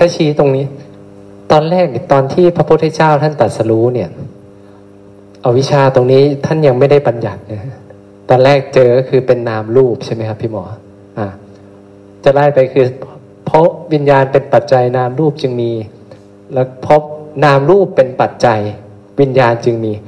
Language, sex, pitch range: Thai, male, 105-150 Hz